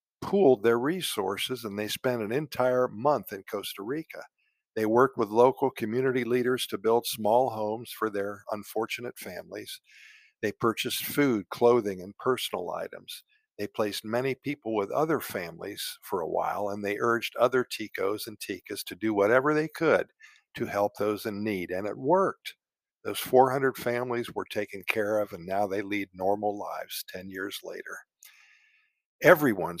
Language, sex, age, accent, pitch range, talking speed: English, male, 50-69, American, 105-140 Hz, 160 wpm